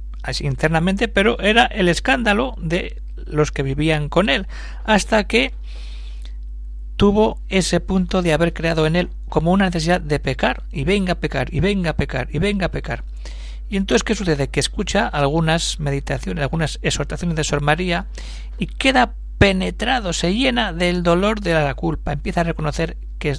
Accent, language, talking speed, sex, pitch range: Spanish, Spanish, 165 wpm, male, 125-170 Hz